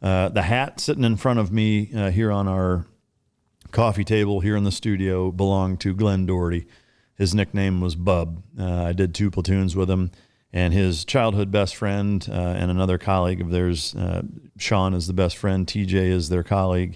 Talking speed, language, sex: 190 wpm, English, male